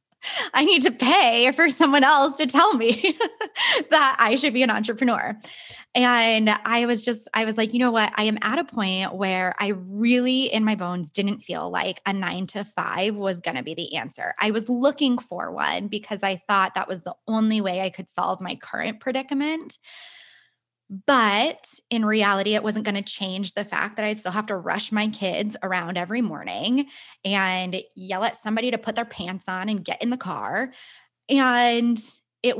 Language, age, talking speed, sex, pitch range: English, 20-39, 195 wpm, female, 195-245 Hz